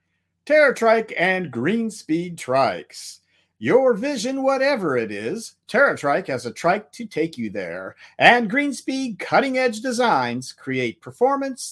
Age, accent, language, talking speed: 50-69, American, English, 120 wpm